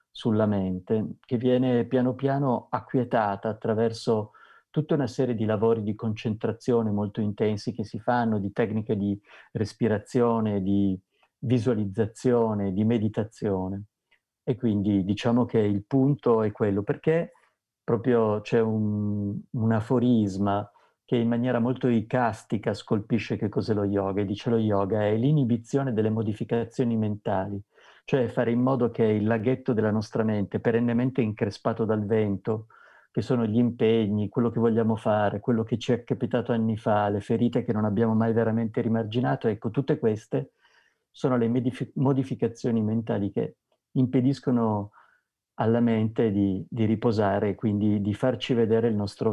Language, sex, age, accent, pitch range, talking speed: Italian, male, 50-69, native, 105-120 Hz, 145 wpm